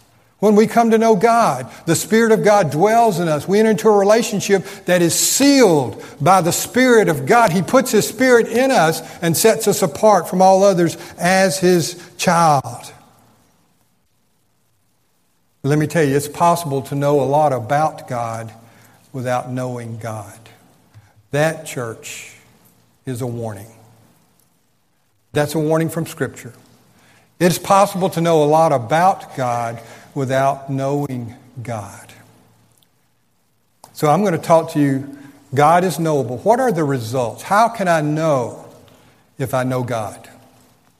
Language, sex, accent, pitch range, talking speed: English, male, American, 125-190 Hz, 145 wpm